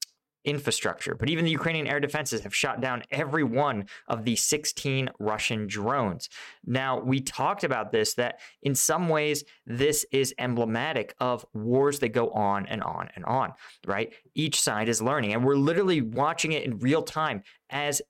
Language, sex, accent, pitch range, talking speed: English, male, American, 125-150 Hz, 170 wpm